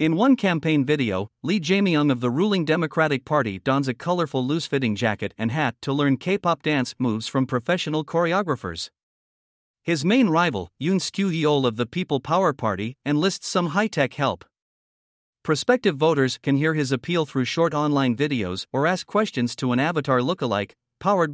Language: English